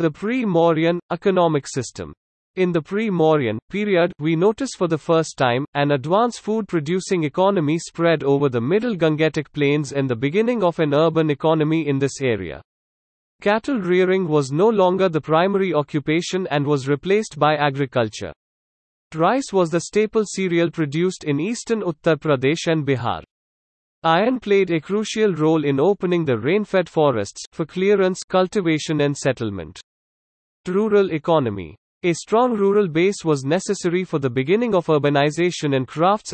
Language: English